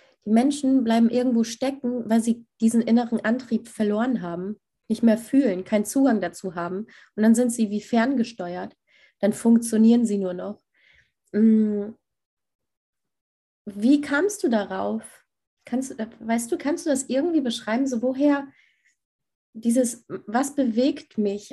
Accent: German